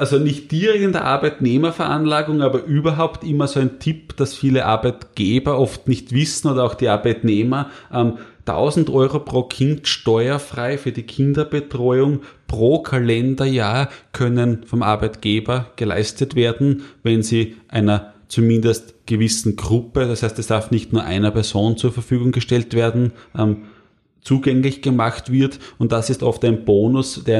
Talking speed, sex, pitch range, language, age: 145 wpm, male, 110-130 Hz, German, 30-49